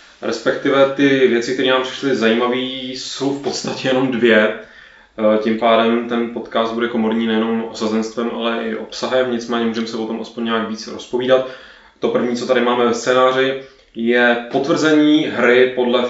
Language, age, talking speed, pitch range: Czech, 20-39, 160 wpm, 110-125 Hz